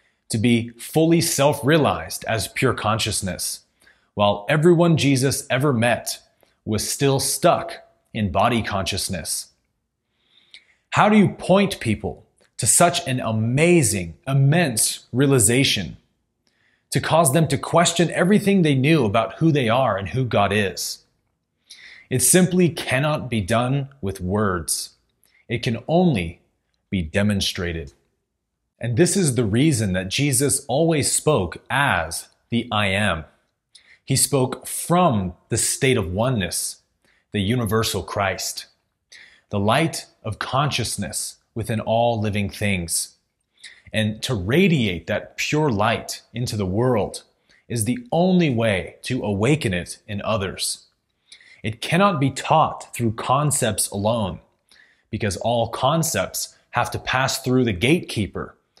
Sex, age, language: male, 30-49, English